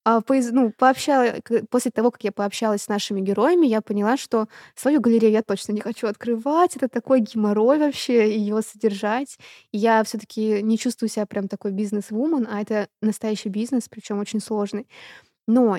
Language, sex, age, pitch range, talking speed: Russian, female, 20-39, 205-230 Hz, 165 wpm